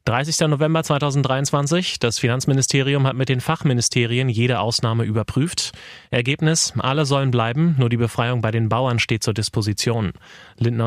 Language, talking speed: German, 145 wpm